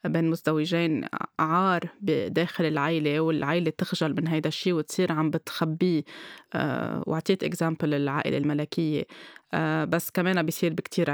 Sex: female